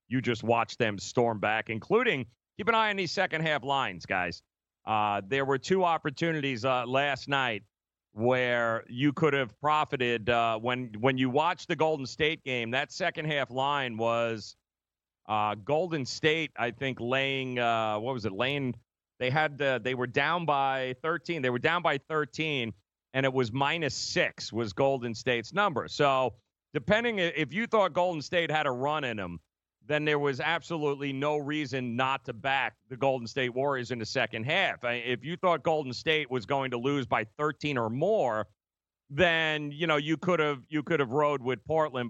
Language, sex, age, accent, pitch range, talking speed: English, male, 40-59, American, 120-150 Hz, 180 wpm